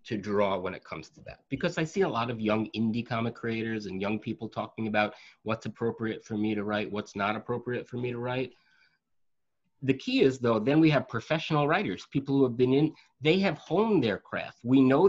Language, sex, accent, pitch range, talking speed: English, male, American, 110-140 Hz, 225 wpm